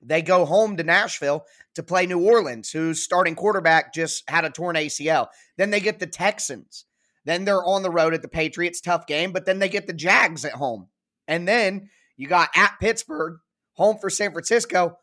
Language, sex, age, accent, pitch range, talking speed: English, male, 20-39, American, 155-190 Hz, 200 wpm